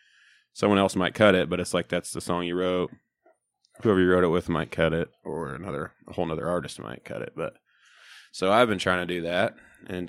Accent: American